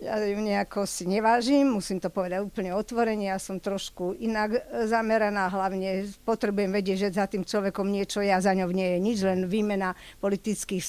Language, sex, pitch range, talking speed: Slovak, female, 200-265 Hz, 175 wpm